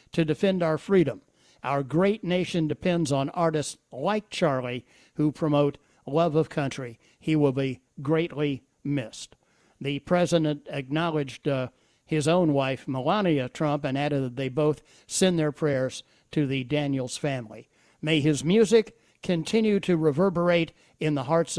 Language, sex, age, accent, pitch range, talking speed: English, male, 60-79, American, 135-165 Hz, 145 wpm